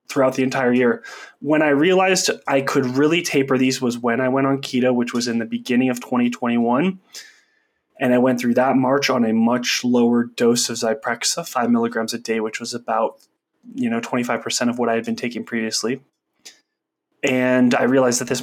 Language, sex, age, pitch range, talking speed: English, male, 20-39, 120-140 Hz, 195 wpm